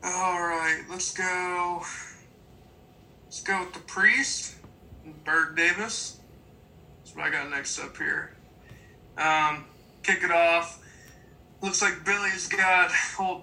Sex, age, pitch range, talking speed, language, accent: male, 20-39, 145-170 Hz, 120 wpm, English, American